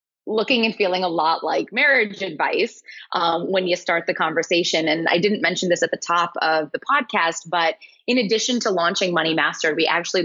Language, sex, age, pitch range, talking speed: English, female, 20-39, 160-205 Hz, 200 wpm